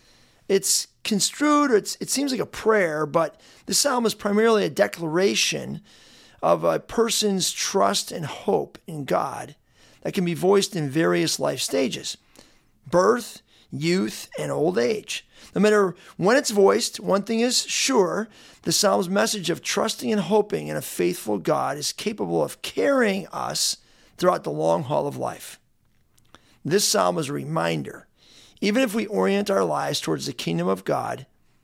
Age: 40-59